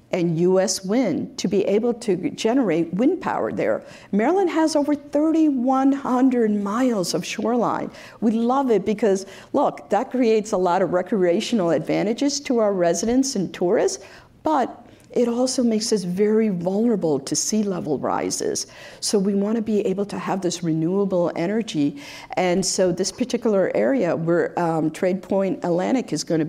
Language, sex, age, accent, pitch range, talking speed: English, female, 50-69, American, 180-240 Hz, 155 wpm